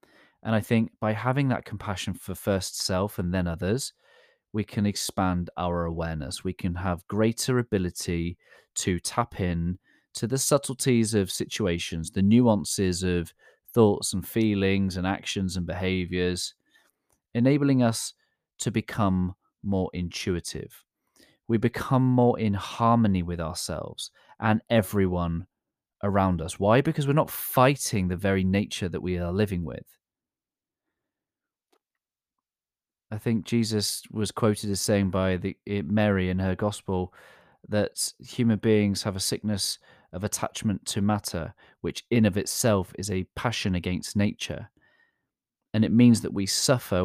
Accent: British